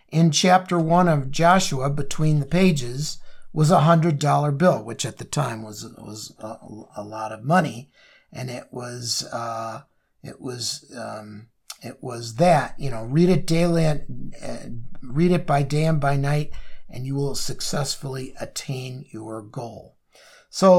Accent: American